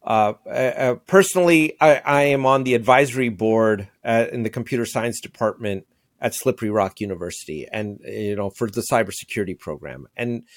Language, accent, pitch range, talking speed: English, American, 115-150 Hz, 160 wpm